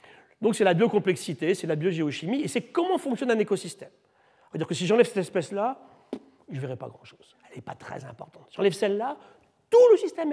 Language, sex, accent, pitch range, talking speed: French, male, French, 150-230 Hz, 205 wpm